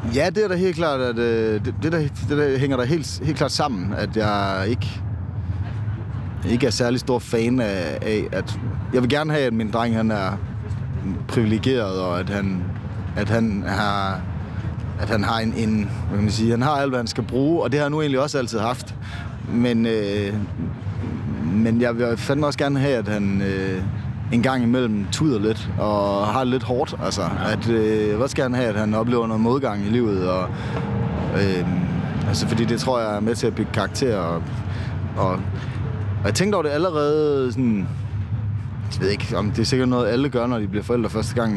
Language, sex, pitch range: Danish, male, 105-125 Hz